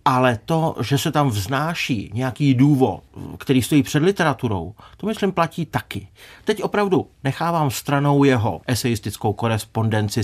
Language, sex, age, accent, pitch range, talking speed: Czech, male, 40-59, native, 115-150 Hz, 135 wpm